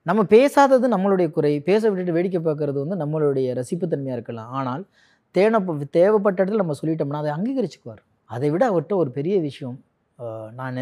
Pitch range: 115-165 Hz